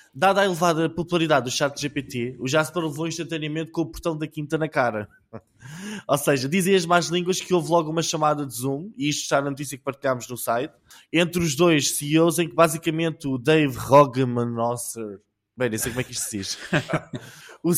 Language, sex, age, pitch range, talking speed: Portuguese, male, 20-39, 135-165 Hz, 205 wpm